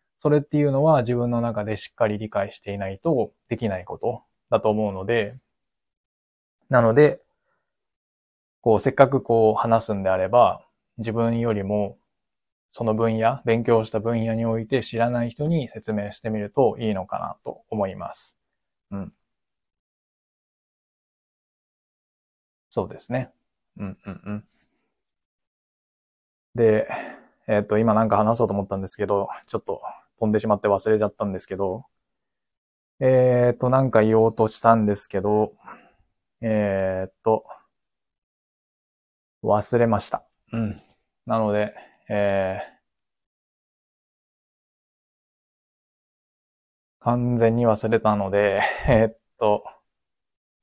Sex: male